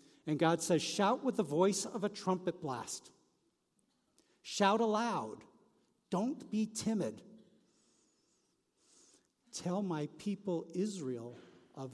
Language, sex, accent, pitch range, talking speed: English, male, American, 160-235 Hz, 105 wpm